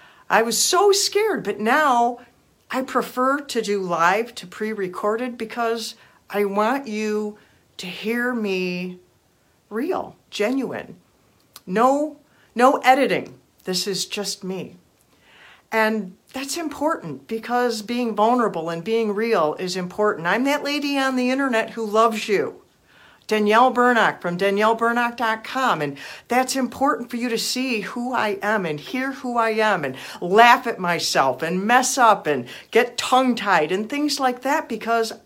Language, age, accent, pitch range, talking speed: English, 50-69, American, 195-250 Hz, 140 wpm